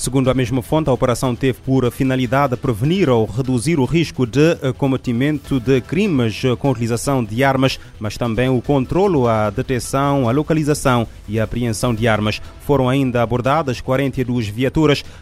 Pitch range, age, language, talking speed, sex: 115-135 Hz, 30-49, Portuguese, 160 wpm, male